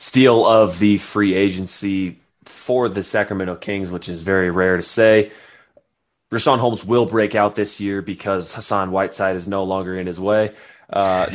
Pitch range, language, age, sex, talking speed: 90-110 Hz, English, 20-39, male, 170 wpm